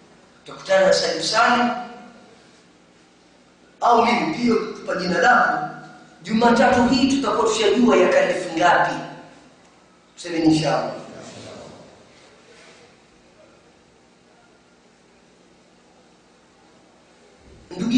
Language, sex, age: Swahili, female, 40-59